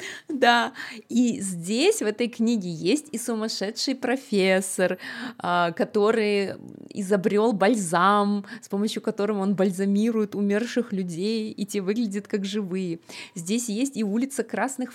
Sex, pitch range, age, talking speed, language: female, 195-235 Hz, 20-39, 120 wpm, Russian